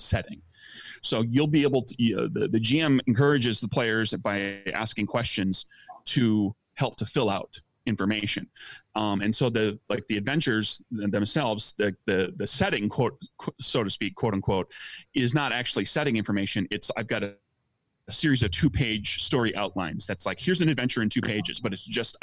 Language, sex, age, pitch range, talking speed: English, male, 30-49, 100-125 Hz, 185 wpm